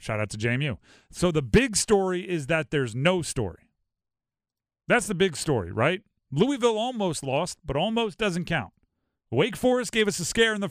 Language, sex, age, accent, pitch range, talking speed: English, male, 40-59, American, 120-190 Hz, 185 wpm